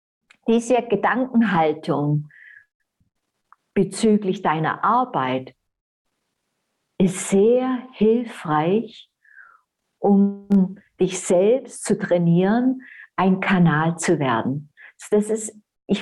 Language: German